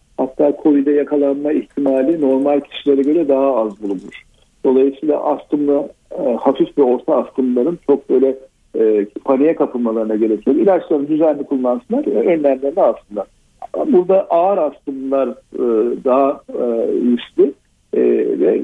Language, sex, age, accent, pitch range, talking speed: Turkish, male, 60-79, native, 130-190 Hz, 105 wpm